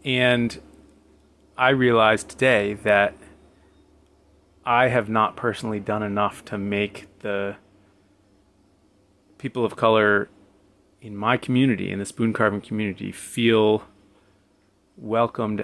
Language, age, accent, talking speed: English, 30-49, American, 105 wpm